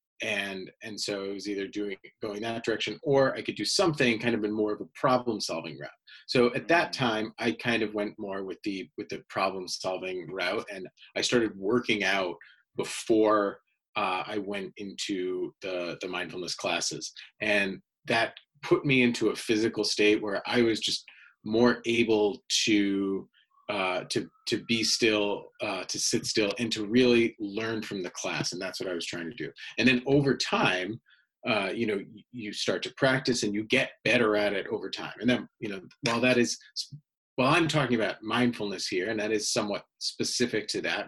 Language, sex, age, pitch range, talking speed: English, male, 30-49, 105-125 Hz, 195 wpm